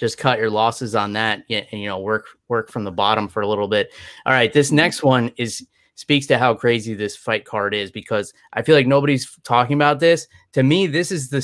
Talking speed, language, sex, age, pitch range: 235 wpm, English, male, 20-39, 115-140 Hz